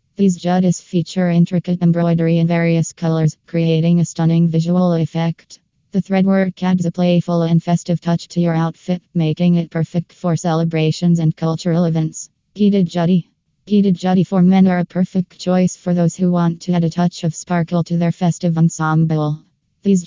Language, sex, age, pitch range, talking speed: English, female, 20-39, 165-180 Hz, 170 wpm